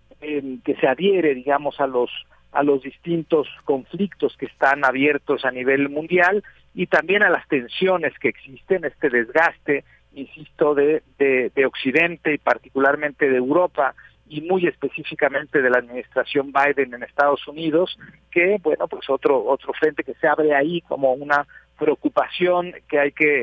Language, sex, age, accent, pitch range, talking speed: Spanish, male, 50-69, Mexican, 135-165 Hz, 155 wpm